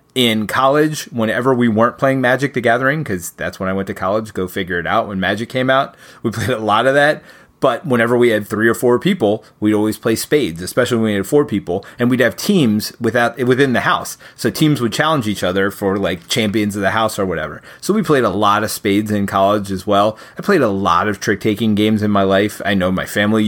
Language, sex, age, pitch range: English, male, 30-49, 105-150 Hz